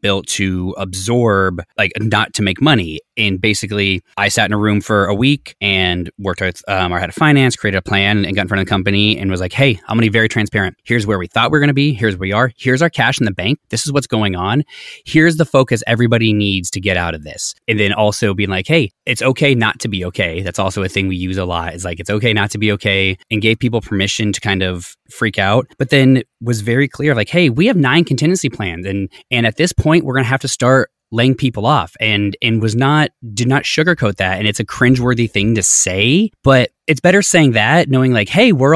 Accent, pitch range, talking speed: American, 100-130 Hz, 255 wpm